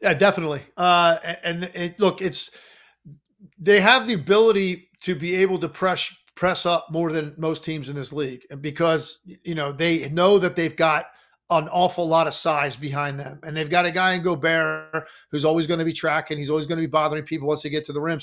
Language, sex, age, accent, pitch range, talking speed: English, male, 40-59, American, 155-185 Hz, 215 wpm